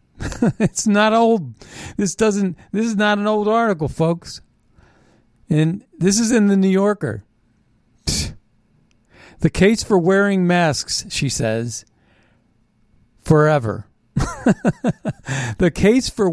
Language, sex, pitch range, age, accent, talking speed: English, male, 130-185 Hz, 50-69, American, 110 wpm